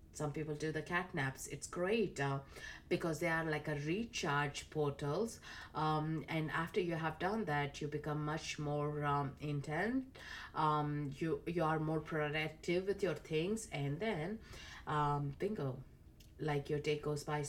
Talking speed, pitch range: 160 wpm, 140-160 Hz